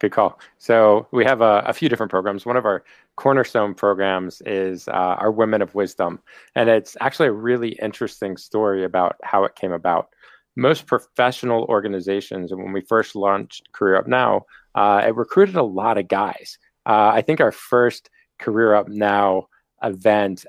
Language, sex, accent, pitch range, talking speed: English, male, American, 100-115 Hz, 175 wpm